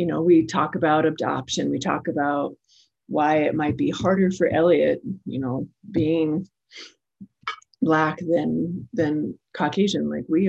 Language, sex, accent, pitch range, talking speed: English, female, American, 145-180 Hz, 145 wpm